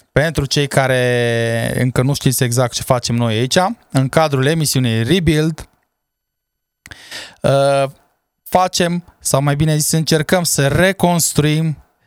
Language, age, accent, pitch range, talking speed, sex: Romanian, 20-39, native, 120-150 Hz, 115 wpm, male